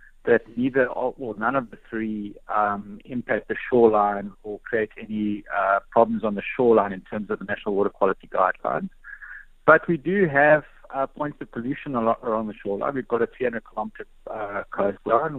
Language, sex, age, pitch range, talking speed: English, male, 60-79, 110-145 Hz, 175 wpm